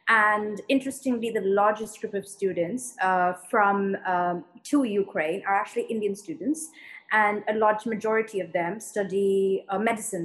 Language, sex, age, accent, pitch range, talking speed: English, female, 20-39, Indian, 185-220 Hz, 145 wpm